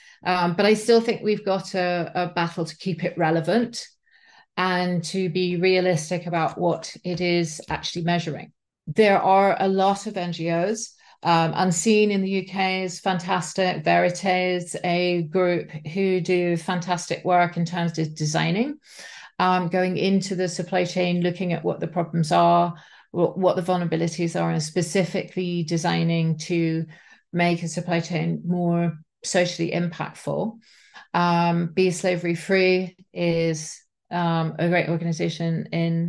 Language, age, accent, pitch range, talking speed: English, 40-59, British, 170-195 Hz, 145 wpm